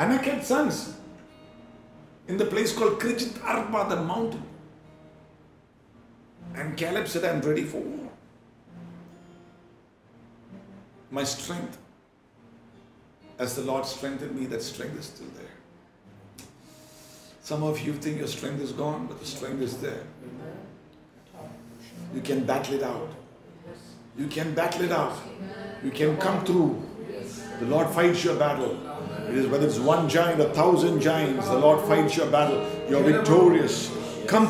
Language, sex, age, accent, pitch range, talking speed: English, male, 50-69, Indian, 135-195 Hz, 140 wpm